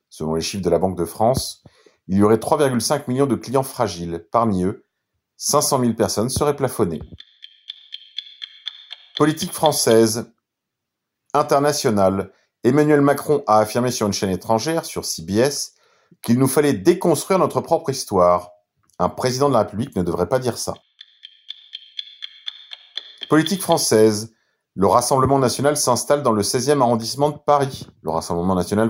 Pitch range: 105-155 Hz